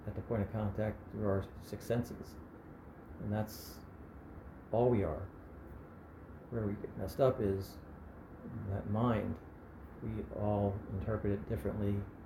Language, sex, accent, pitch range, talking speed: English, male, American, 80-110 Hz, 130 wpm